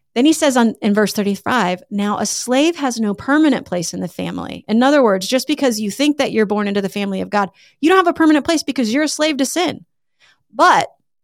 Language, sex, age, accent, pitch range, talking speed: English, female, 30-49, American, 200-280 Hz, 235 wpm